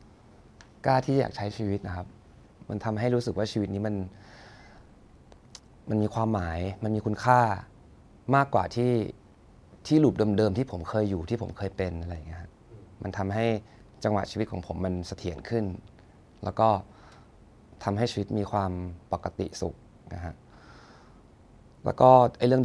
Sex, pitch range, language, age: male, 95-115 Hz, English, 20-39